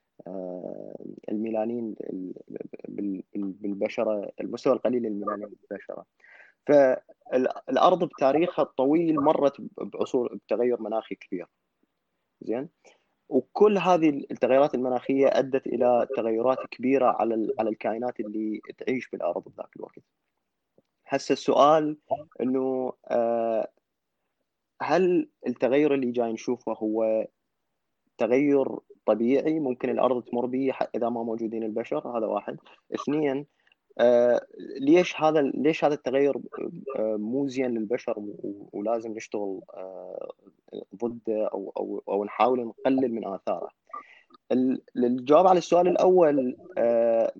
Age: 20-39